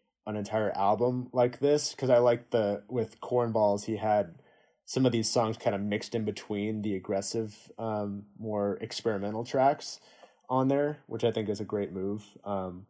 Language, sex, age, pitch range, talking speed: English, male, 20-39, 100-125 Hz, 180 wpm